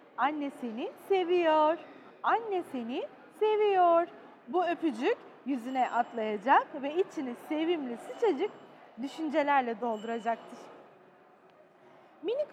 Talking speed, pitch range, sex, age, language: 70 wpm, 260-385 Hz, female, 30-49, Turkish